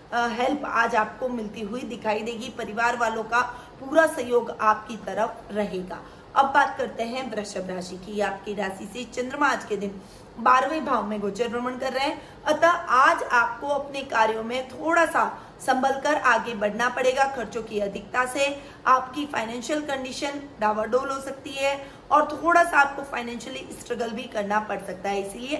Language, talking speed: Hindi, 170 wpm